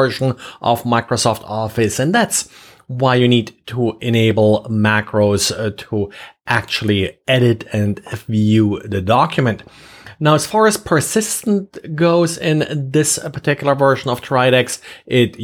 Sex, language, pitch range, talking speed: male, English, 110-140 Hz, 125 wpm